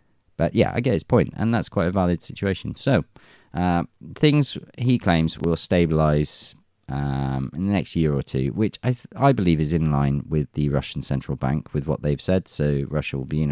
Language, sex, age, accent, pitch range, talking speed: English, male, 30-49, British, 75-115 Hz, 215 wpm